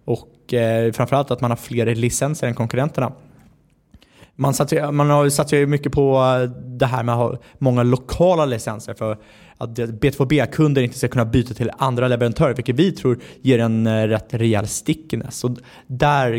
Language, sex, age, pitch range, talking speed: Swedish, male, 20-39, 115-140 Hz, 170 wpm